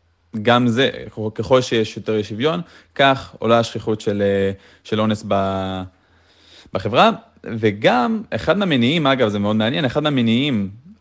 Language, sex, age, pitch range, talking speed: Hebrew, male, 20-39, 100-120 Hz, 125 wpm